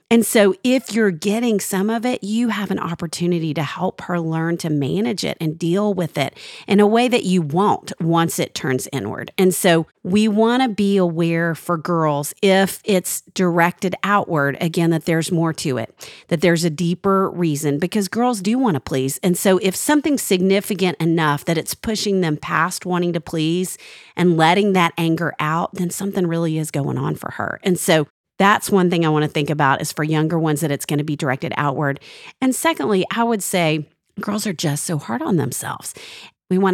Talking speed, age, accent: 205 wpm, 40-59, American